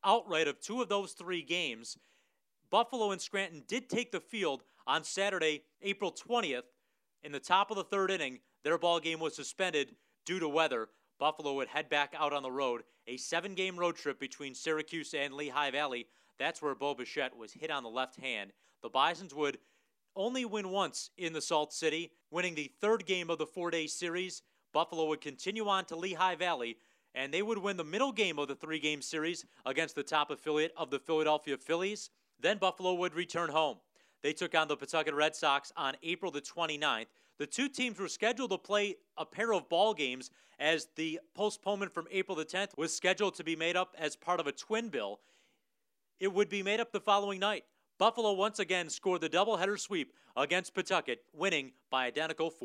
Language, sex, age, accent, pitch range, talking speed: English, male, 30-49, American, 150-195 Hz, 195 wpm